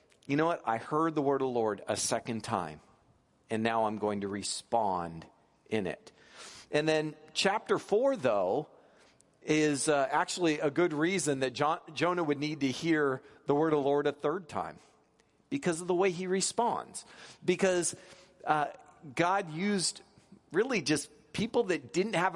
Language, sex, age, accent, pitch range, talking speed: English, male, 50-69, American, 140-180 Hz, 170 wpm